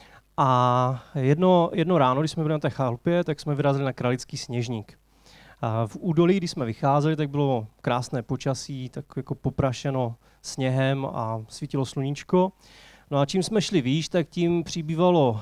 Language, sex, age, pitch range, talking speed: Czech, male, 20-39, 130-165 Hz, 160 wpm